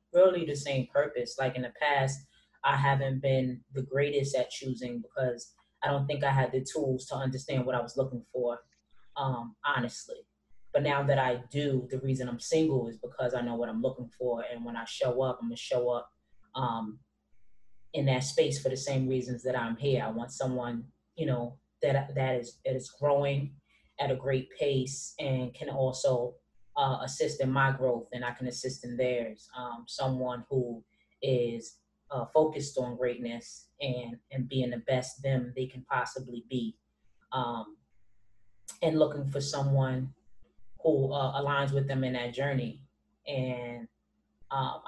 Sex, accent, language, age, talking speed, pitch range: female, American, English, 20-39, 175 wpm, 120-135 Hz